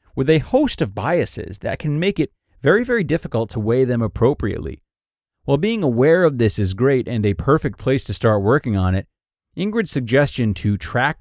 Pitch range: 105-140 Hz